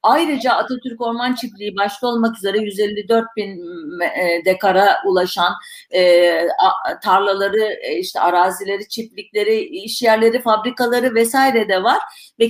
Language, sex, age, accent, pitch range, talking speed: Turkish, female, 50-69, native, 190-260 Hz, 100 wpm